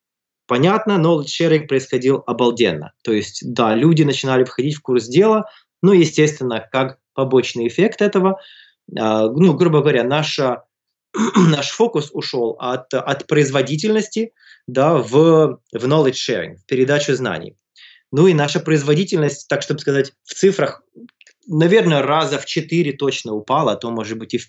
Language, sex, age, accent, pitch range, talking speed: Russian, male, 20-39, native, 125-165 Hz, 140 wpm